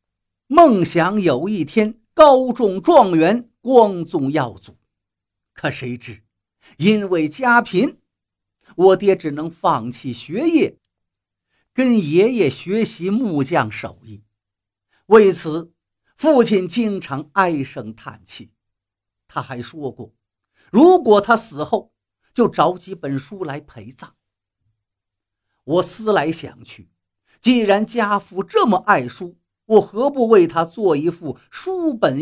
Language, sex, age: Chinese, male, 50-69